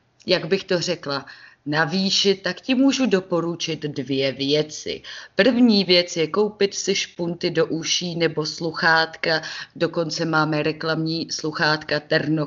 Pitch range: 145-185 Hz